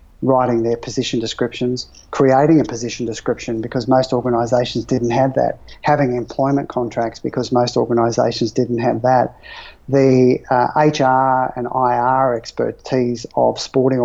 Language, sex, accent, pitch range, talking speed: English, male, Australian, 120-135 Hz, 130 wpm